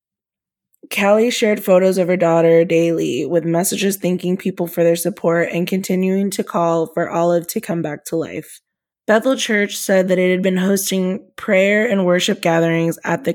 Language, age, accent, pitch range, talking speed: English, 20-39, American, 170-195 Hz, 175 wpm